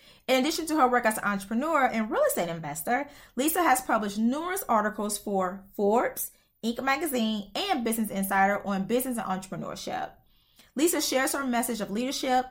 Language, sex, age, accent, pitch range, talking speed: English, female, 20-39, American, 205-265 Hz, 165 wpm